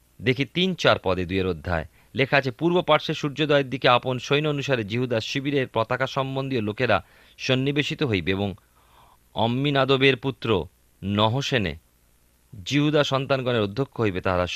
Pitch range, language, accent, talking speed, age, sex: 95-135 Hz, Bengali, native, 130 wpm, 40-59, male